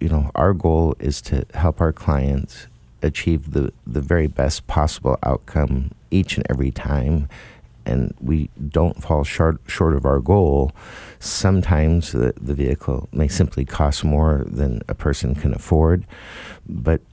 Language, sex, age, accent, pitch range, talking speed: English, male, 50-69, American, 70-80 Hz, 150 wpm